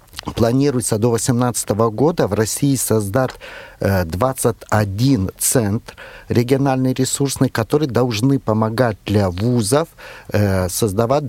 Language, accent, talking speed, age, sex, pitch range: Russian, native, 90 wpm, 50-69, male, 100-125 Hz